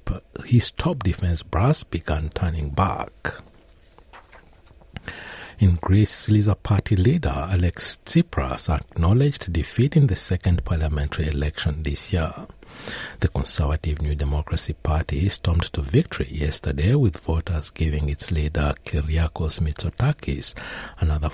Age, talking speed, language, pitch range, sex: 60-79, 110 wpm, English, 75-95 Hz, male